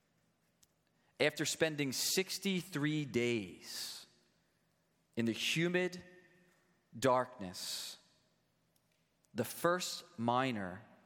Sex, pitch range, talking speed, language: male, 115-165 Hz, 60 wpm, English